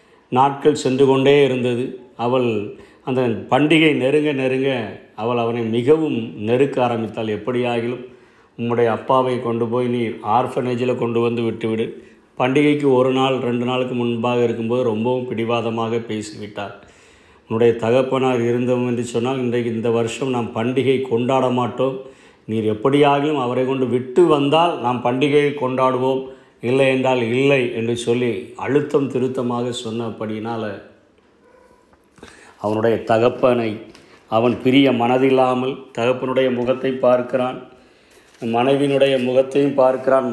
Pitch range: 115-130 Hz